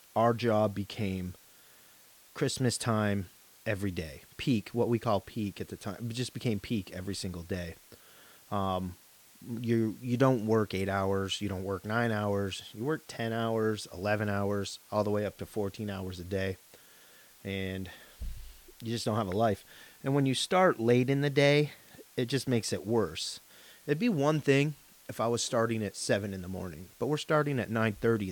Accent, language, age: American, English, 30-49